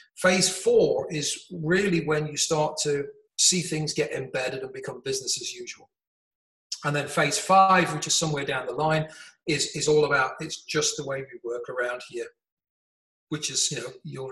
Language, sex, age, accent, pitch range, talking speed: English, male, 40-59, British, 140-180 Hz, 185 wpm